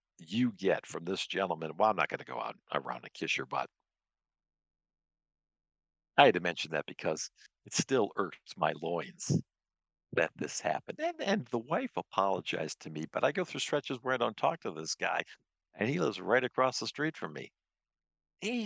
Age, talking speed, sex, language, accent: 60-79, 195 wpm, male, English, American